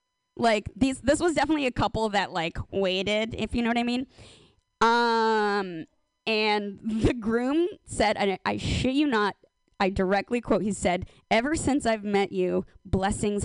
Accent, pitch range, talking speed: American, 190-260 Hz, 170 wpm